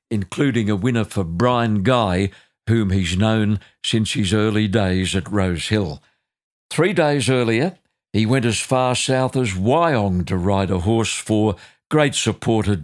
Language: English